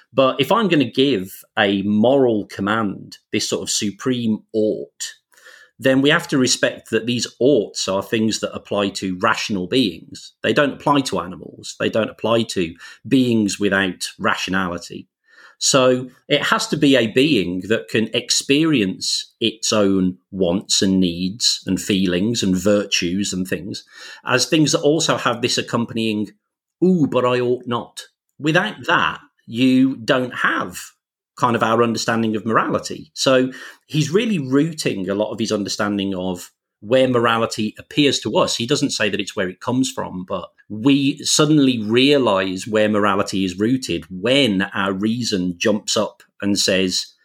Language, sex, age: English, male, 40-59